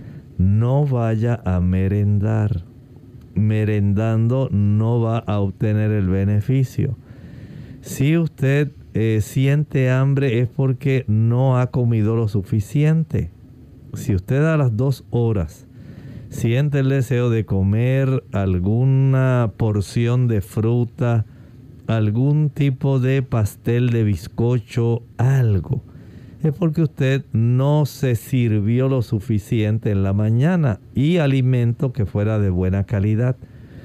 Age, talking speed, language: 50-69, 110 wpm, Spanish